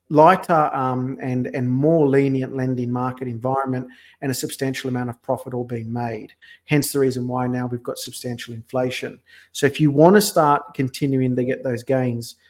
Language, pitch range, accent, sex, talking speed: English, 125-140 Hz, Australian, male, 180 wpm